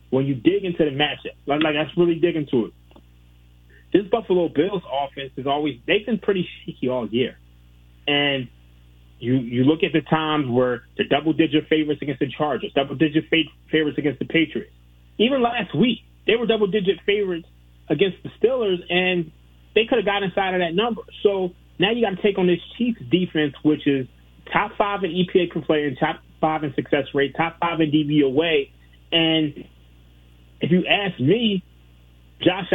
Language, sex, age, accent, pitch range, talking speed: English, male, 30-49, American, 125-185 Hz, 180 wpm